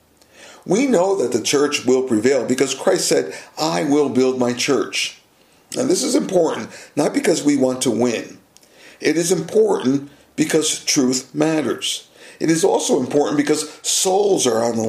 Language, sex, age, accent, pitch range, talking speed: English, male, 50-69, American, 120-155 Hz, 160 wpm